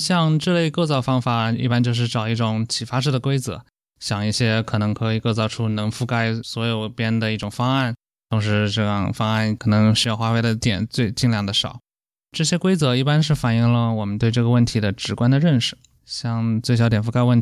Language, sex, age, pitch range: Chinese, male, 20-39, 110-125 Hz